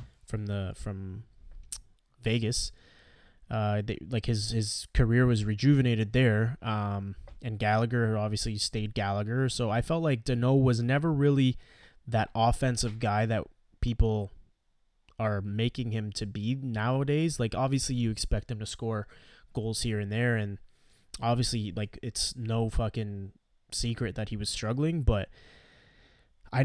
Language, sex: English, male